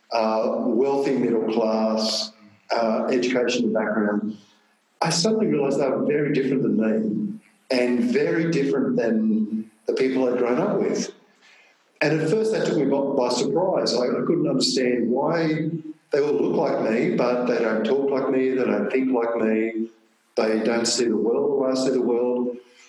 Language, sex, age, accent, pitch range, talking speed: English, male, 50-69, Australian, 110-140 Hz, 170 wpm